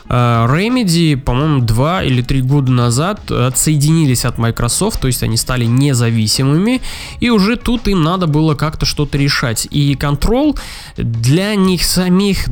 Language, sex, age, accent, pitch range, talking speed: Russian, male, 20-39, native, 125-170 Hz, 140 wpm